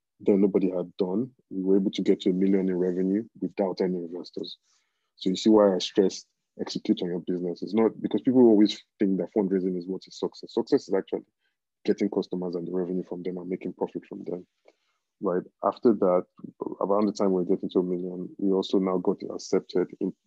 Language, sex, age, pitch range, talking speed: English, male, 20-39, 90-95 Hz, 210 wpm